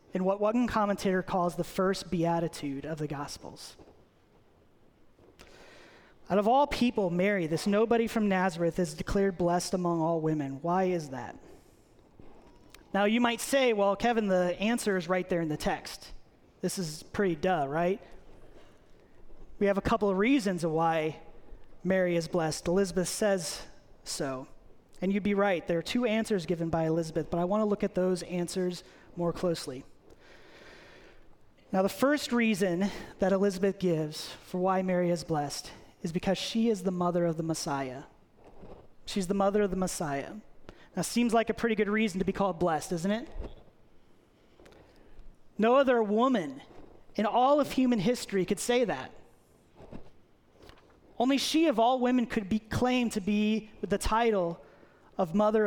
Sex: male